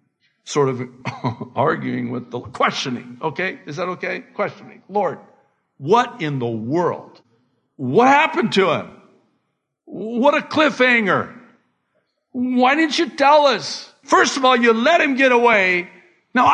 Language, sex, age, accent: English, male, 60-79, American